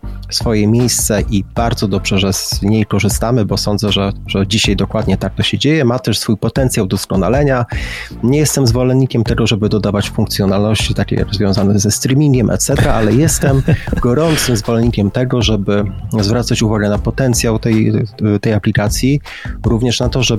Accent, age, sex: native, 30-49, male